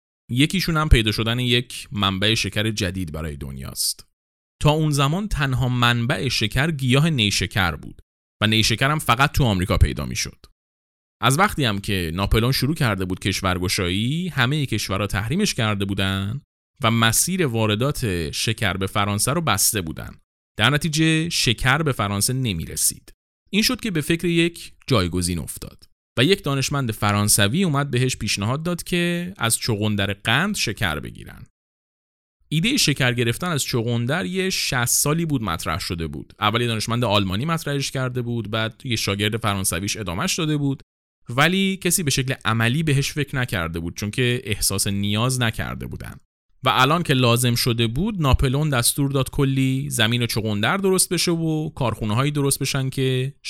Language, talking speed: Persian, 160 wpm